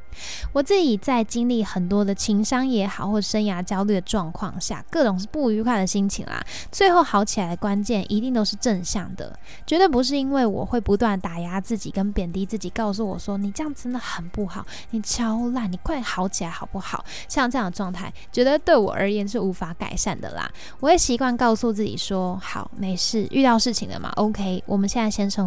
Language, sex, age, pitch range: Chinese, female, 10-29, 195-245 Hz